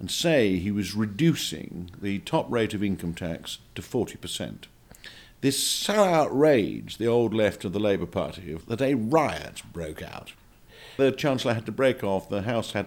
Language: English